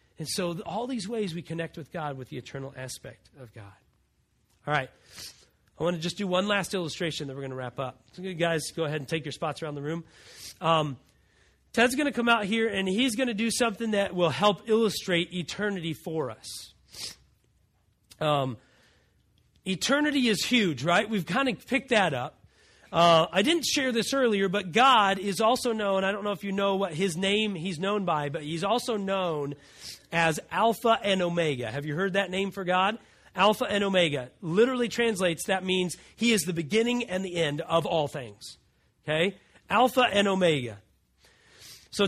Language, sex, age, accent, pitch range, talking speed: English, male, 30-49, American, 150-220 Hz, 190 wpm